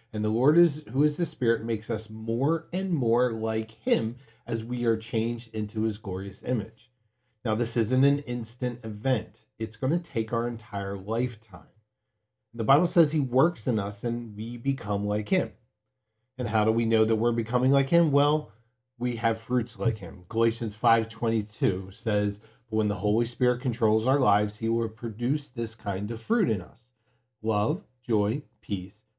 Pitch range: 110-130 Hz